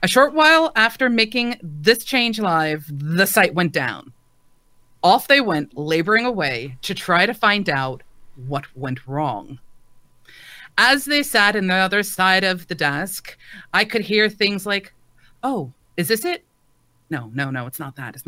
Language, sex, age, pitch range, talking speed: English, female, 40-59, 140-230 Hz, 165 wpm